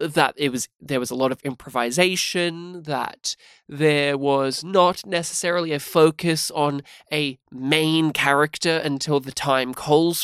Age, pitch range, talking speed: 20-39, 140-175 Hz, 140 wpm